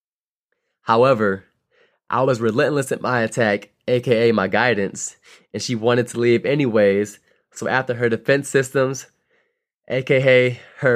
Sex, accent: male, American